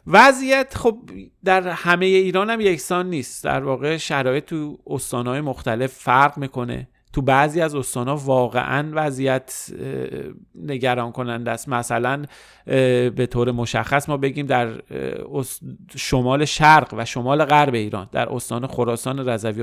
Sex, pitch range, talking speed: male, 120-145 Hz, 130 wpm